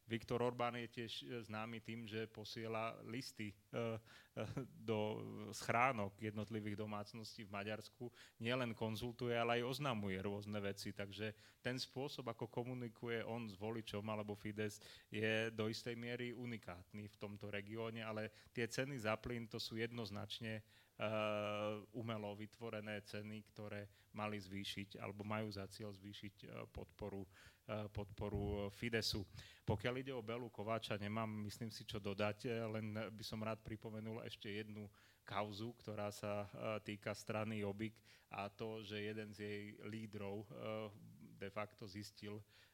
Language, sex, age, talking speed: Slovak, male, 30-49, 140 wpm